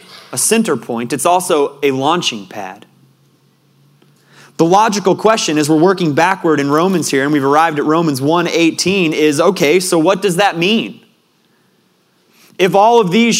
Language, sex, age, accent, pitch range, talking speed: English, male, 30-49, American, 130-185 Hz, 155 wpm